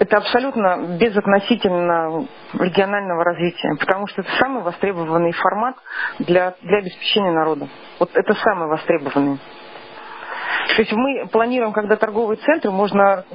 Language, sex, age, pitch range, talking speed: Russian, female, 40-59, 165-205 Hz, 120 wpm